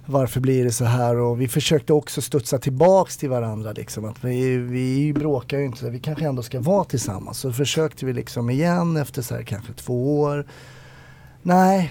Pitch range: 125-155 Hz